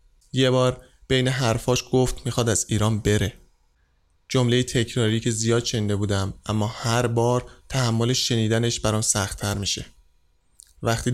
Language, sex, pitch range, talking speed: Persian, male, 100-120 Hz, 130 wpm